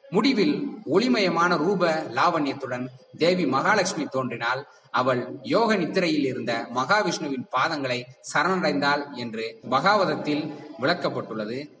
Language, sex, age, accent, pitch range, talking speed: Tamil, male, 30-49, native, 125-185 Hz, 85 wpm